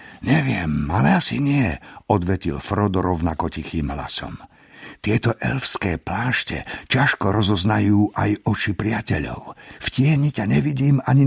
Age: 50-69